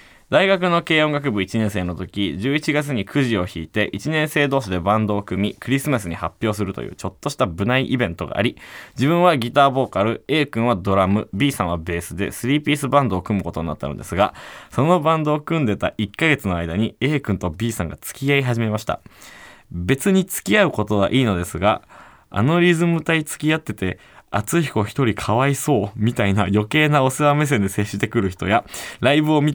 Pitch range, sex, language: 100-145 Hz, male, Japanese